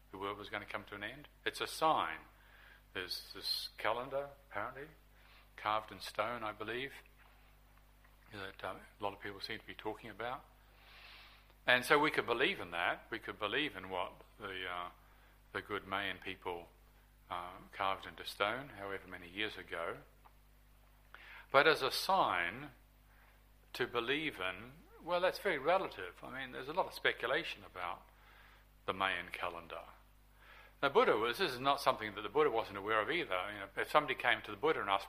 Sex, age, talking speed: male, 50-69, 180 wpm